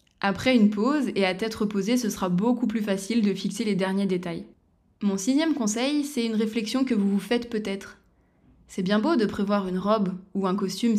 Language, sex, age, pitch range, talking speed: French, female, 20-39, 195-235 Hz, 205 wpm